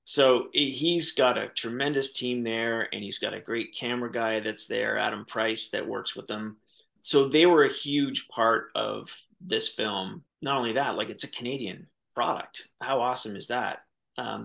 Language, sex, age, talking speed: English, male, 30-49, 185 wpm